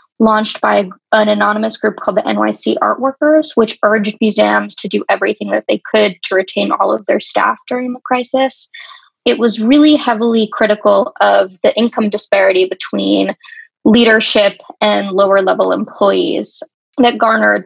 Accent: American